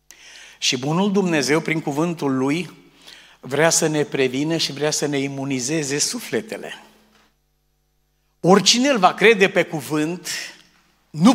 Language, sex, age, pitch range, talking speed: Romanian, male, 50-69, 140-185 Hz, 120 wpm